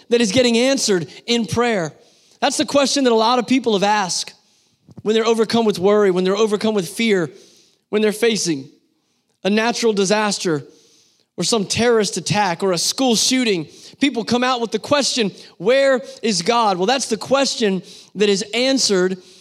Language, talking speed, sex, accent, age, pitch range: English, 175 wpm, male, American, 30-49, 205-255 Hz